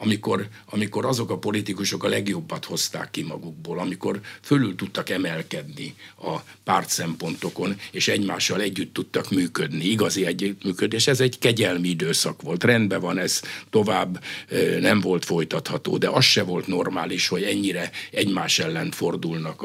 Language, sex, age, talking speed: Hungarian, male, 60-79, 140 wpm